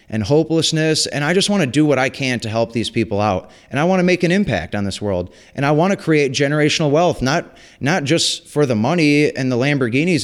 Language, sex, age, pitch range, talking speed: English, male, 30-49, 110-145 Hz, 245 wpm